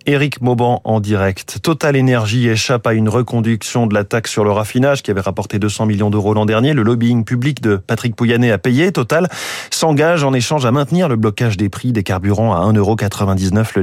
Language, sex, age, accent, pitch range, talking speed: French, male, 30-49, French, 105-140 Hz, 205 wpm